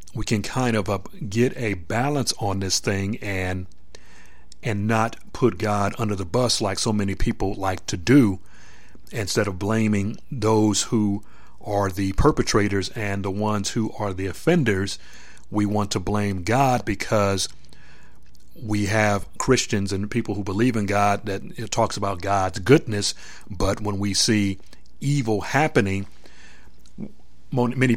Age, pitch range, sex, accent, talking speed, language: 40-59, 95-115 Hz, male, American, 145 wpm, English